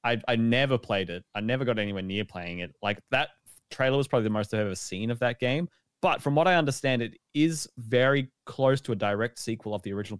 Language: English